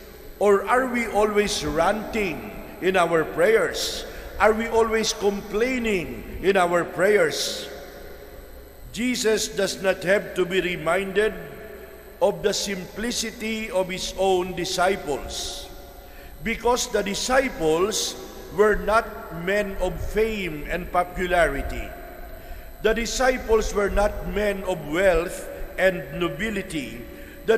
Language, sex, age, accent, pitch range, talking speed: English, male, 50-69, Filipino, 185-225 Hz, 105 wpm